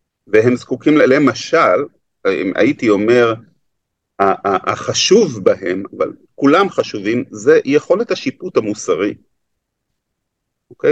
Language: Hebrew